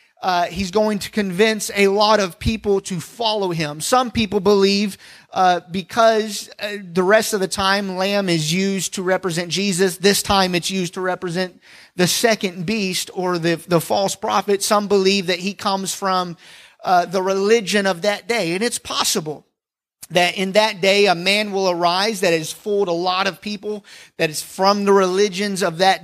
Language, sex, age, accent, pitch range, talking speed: English, male, 30-49, American, 180-210 Hz, 185 wpm